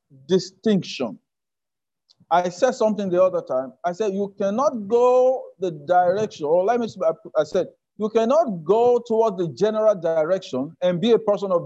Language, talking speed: English, 160 wpm